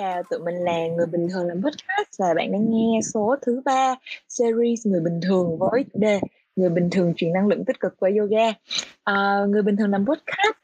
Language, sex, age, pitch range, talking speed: Vietnamese, female, 20-39, 180-255 Hz, 220 wpm